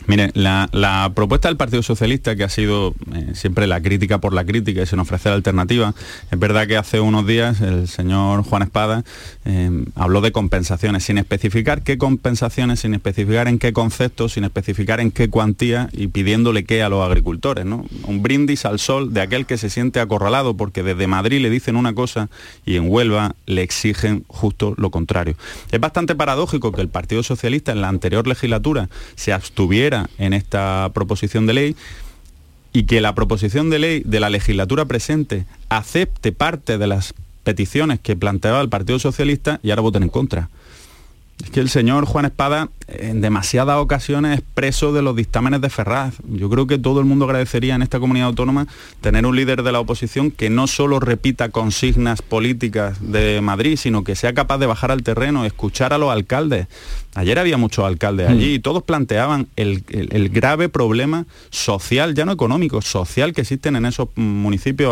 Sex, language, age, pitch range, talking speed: male, Spanish, 30-49, 100-130 Hz, 185 wpm